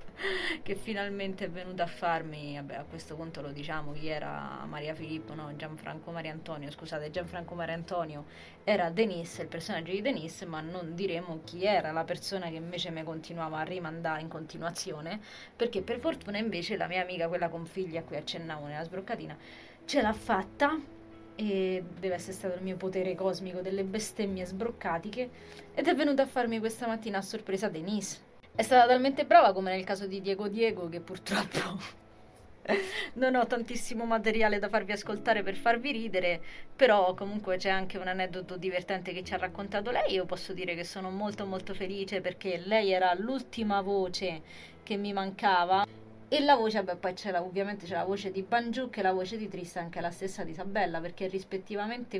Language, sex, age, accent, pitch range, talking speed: Italian, female, 20-39, native, 170-210 Hz, 180 wpm